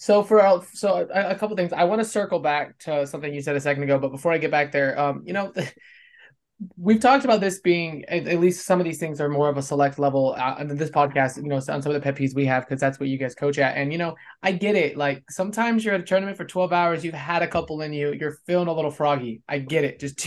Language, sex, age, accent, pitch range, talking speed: English, male, 20-39, American, 150-185 Hz, 290 wpm